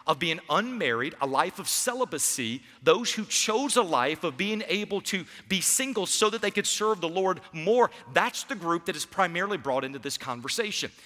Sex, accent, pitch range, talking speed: male, American, 140-210 Hz, 195 wpm